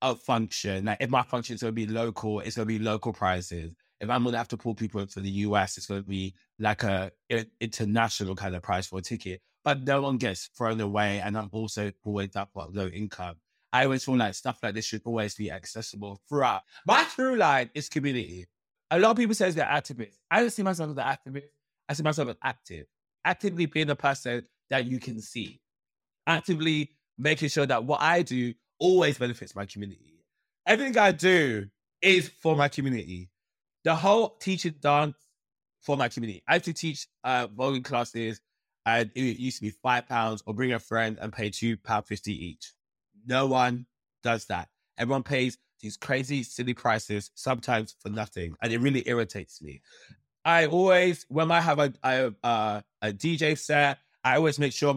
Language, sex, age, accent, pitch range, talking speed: English, male, 20-39, British, 105-145 Hz, 200 wpm